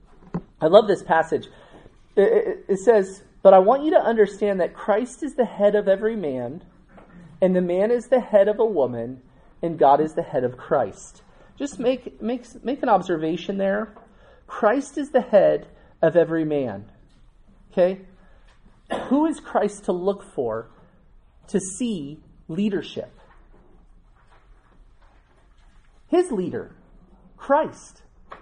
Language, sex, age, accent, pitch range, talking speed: English, male, 30-49, American, 190-245 Hz, 135 wpm